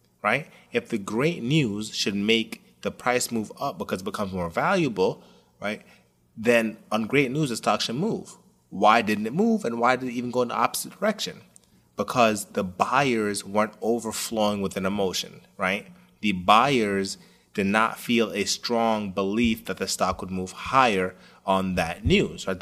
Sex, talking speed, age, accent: male, 175 wpm, 30-49, American